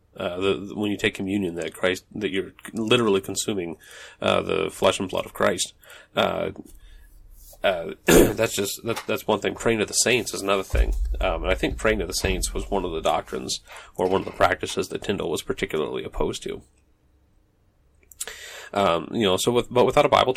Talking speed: 195 wpm